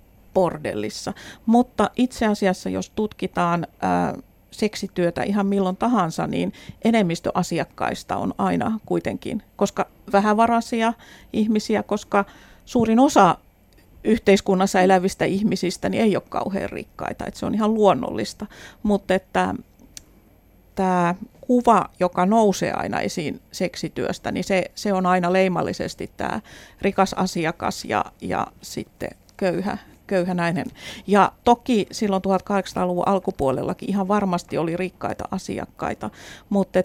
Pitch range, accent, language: 175-210 Hz, native, Finnish